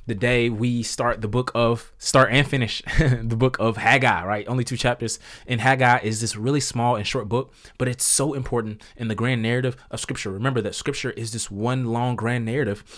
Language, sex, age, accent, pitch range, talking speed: English, male, 20-39, American, 115-140 Hz, 215 wpm